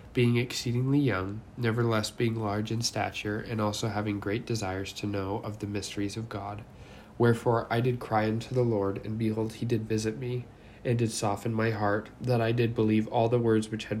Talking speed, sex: 200 wpm, male